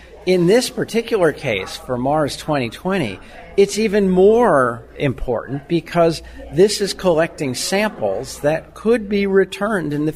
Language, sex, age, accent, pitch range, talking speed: English, male, 50-69, American, 130-190 Hz, 130 wpm